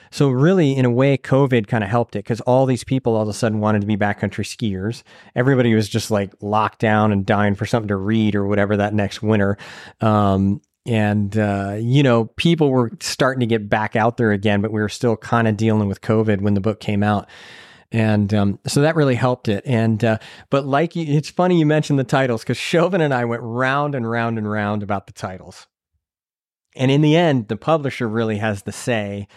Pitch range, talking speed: 105-130 Hz, 220 wpm